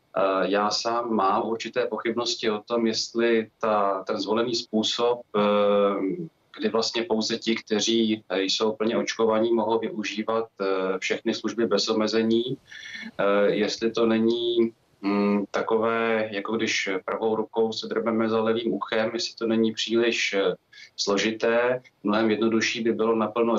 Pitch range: 105-115 Hz